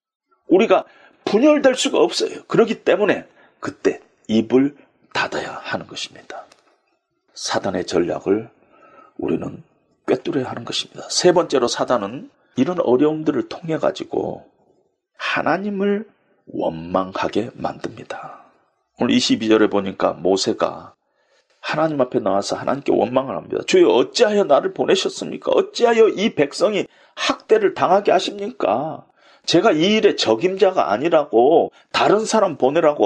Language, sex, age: Korean, male, 40-59